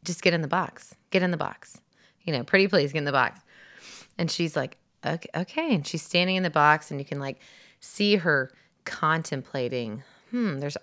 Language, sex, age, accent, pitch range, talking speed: English, female, 20-39, American, 140-175 Hz, 205 wpm